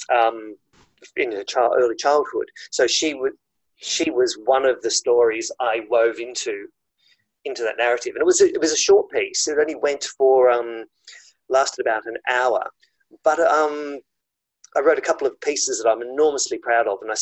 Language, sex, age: English, male, 40-59